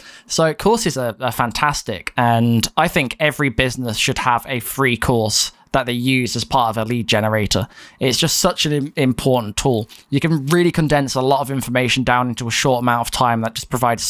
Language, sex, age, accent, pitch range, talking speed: English, male, 10-29, British, 120-145 Hz, 205 wpm